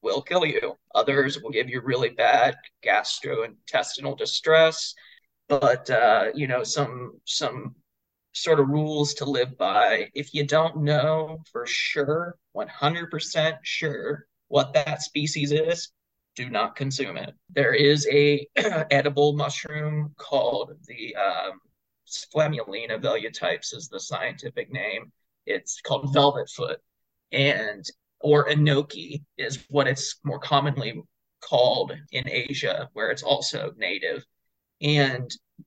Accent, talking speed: American, 125 wpm